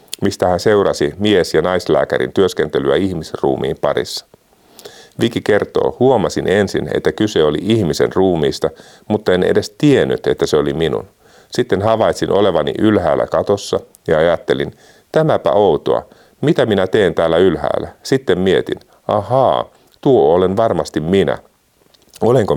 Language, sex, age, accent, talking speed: Finnish, male, 50-69, native, 130 wpm